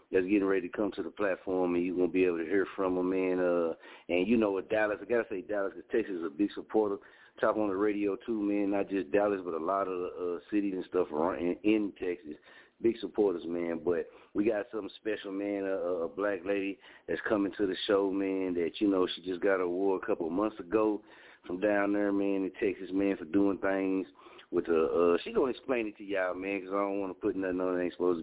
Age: 30-49